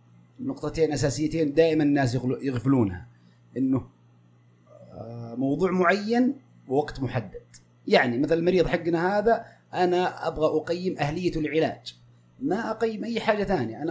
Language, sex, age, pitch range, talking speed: Arabic, male, 30-49, 125-175 Hz, 110 wpm